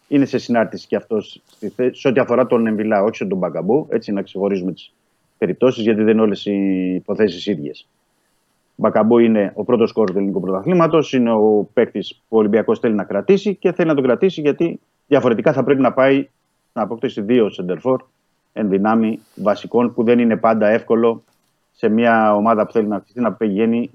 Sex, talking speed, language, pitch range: male, 190 wpm, Greek, 100-135 Hz